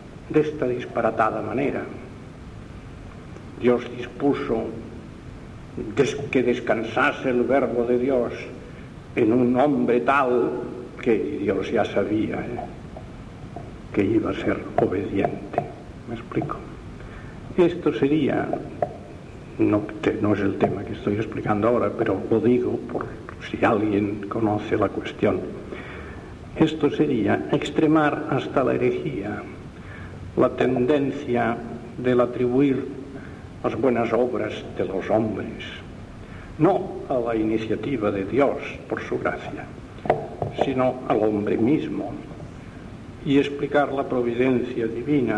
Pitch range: 110-135 Hz